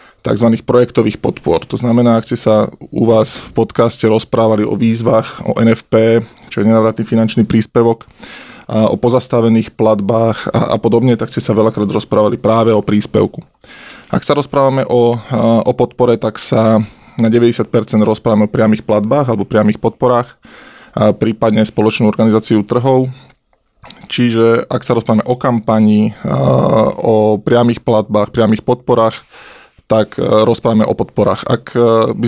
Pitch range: 110-120 Hz